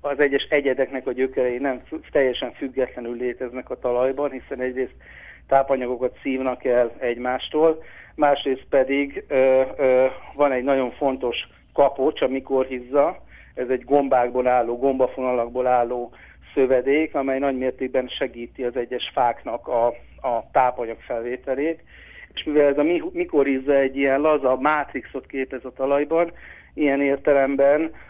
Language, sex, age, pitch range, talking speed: Hungarian, male, 60-79, 125-140 Hz, 130 wpm